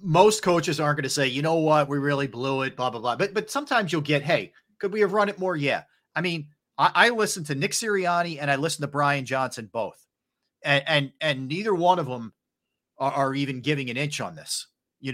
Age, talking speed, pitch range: 40-59, 240 wpm, 135-180 Hz